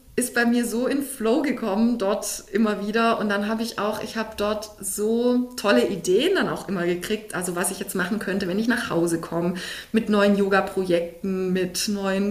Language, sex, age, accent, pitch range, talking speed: German, female, 30-49, German, 195-225 Hz, 200 wpm